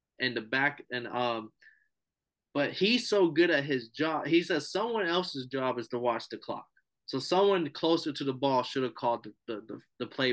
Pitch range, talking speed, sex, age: 130-160 Hz, 205 wpm, male, 20-39